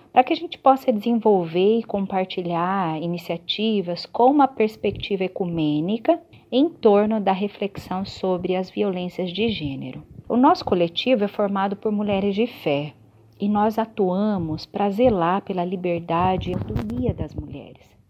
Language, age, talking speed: Portuguese, 40-59, 140 wpm